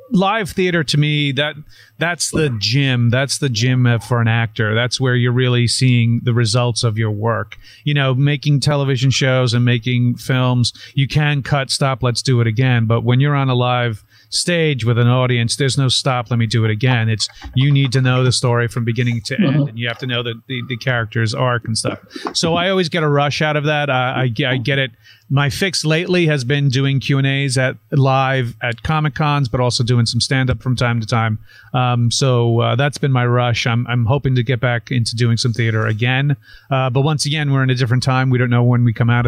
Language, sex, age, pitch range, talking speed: English, male, 40-59, 120-140 Hz, 230 wpm